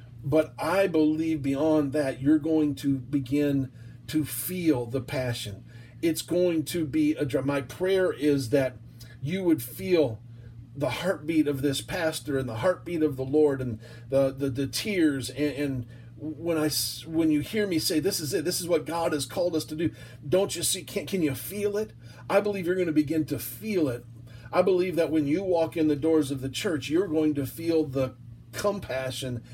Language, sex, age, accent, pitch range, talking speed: English, male, 40-59, American, 120-155 Hz, 200 wpm